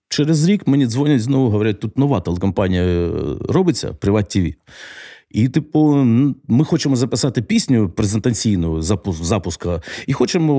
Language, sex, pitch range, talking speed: Ukrainian, male, 100-135 Hz, 125 wpm